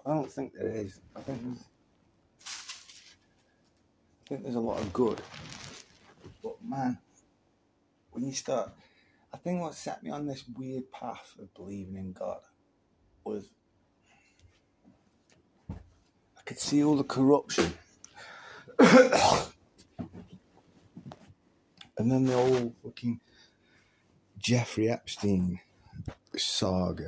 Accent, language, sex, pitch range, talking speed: British, English, male, 100-125 Hz, 105 wpm